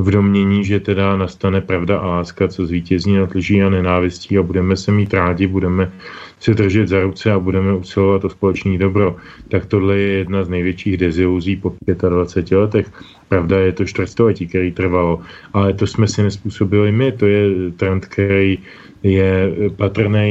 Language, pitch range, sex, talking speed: Slovak, 90-105 Hz, male, 170 wpm